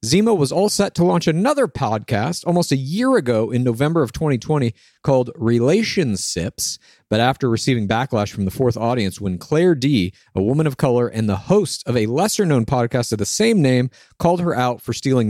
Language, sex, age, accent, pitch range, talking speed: English, male, 40-59, American, 115-160 Hz, 195 wpm